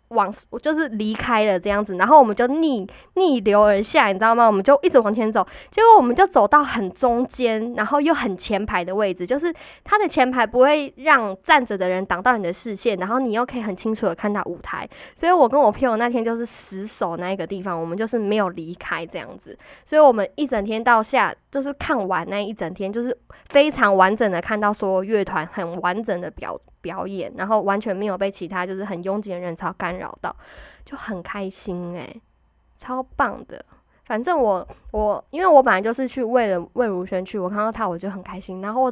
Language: Chinese